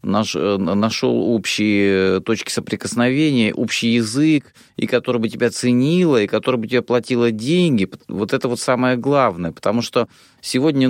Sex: male